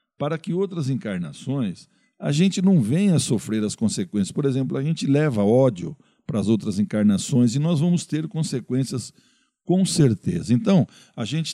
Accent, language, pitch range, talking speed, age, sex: Brazilian, Portuguese, 115-175 Hz, 160 wpm, 60-79, male